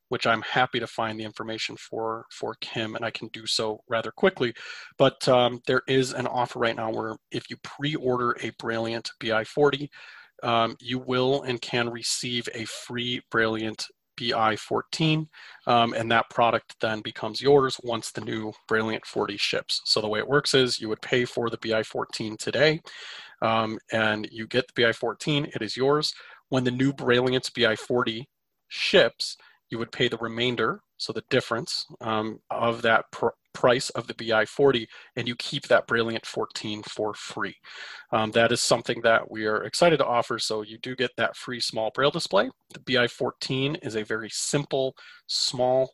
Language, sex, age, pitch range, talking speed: English, male, 30-49, 110-130 Hz, 180 wpm